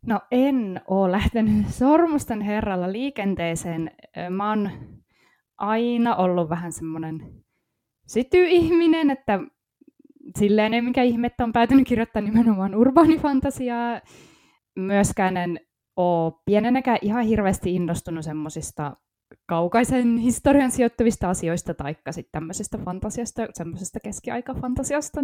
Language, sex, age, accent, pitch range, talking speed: Finnish, female, 20-39, native, 180-245 Hz, 100 wpm